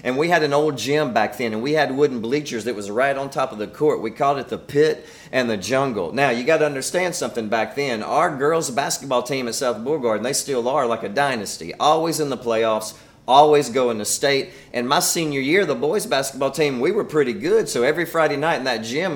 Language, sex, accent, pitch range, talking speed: English, male, American, 125-155 Hz, 240 wpm